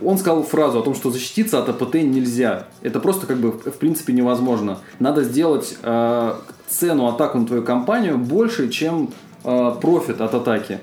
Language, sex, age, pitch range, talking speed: Russian, male, 20-39, 120-150 Hz, 170 wpm